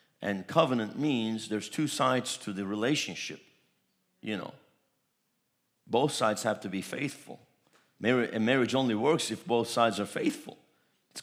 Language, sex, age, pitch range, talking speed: English, male, 50-69, 115-130 Hz, 150 wpm